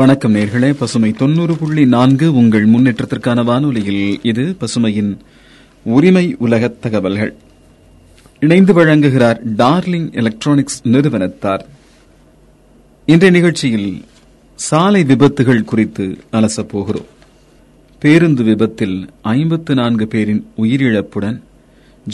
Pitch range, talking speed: 105-140 Hz, 80 wpm